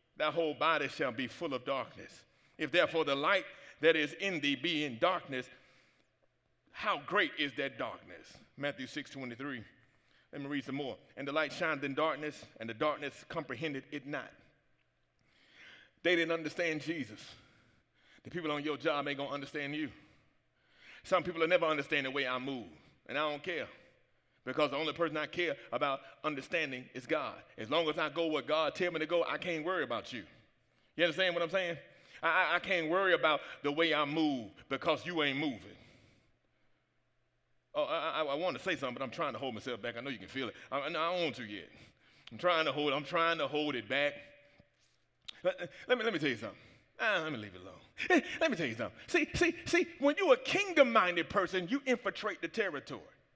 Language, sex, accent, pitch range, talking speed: English, male, American, 140-175 Hz, 210 wpm